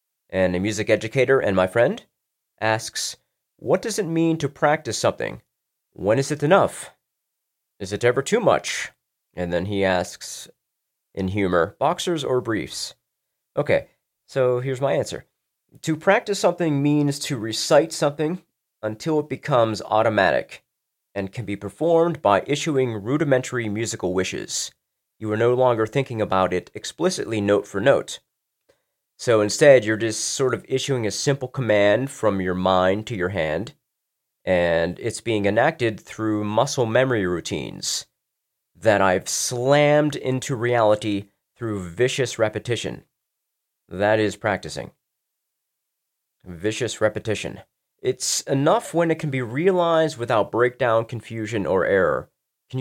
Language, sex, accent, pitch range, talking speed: English, male, American, 105-140 Hz, 135 wpm